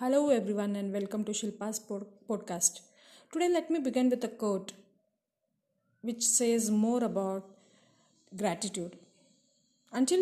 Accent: Indian